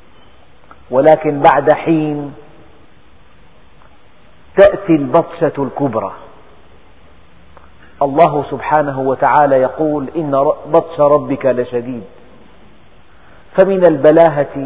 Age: 40-59